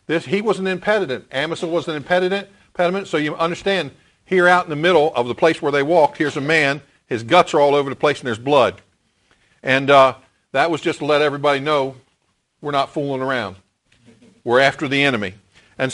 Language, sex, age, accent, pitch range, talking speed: English, male, 50-69, American, 145-180 Hz, 205 wpm